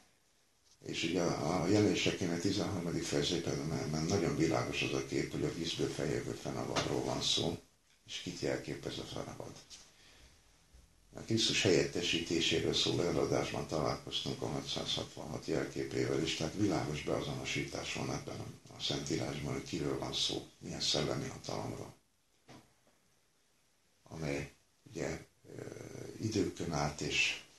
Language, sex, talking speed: English, male, 120 wpm